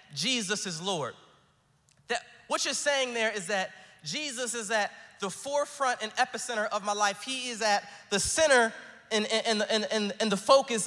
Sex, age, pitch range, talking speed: male, 20-39, 215-275 Hz, 155 wpm